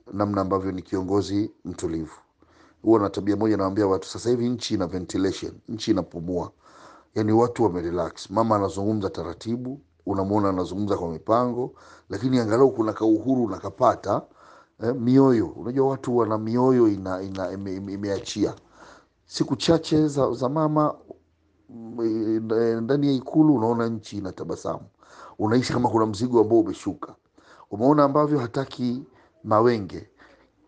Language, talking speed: Swahili, 125 wpm